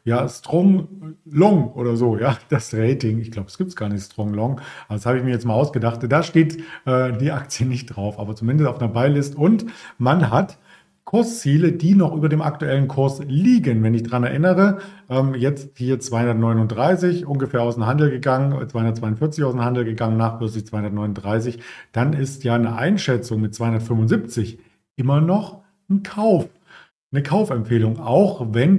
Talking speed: 170 wpm